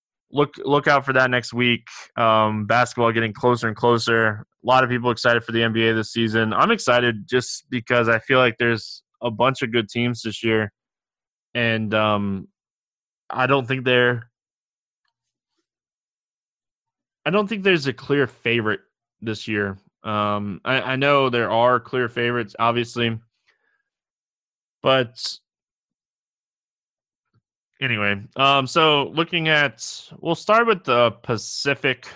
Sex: male